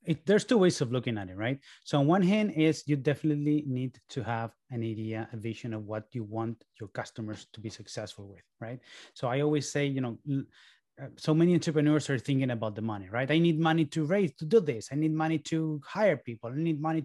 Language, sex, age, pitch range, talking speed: English, male, 30-49, 115-155 Hz, 230 wpm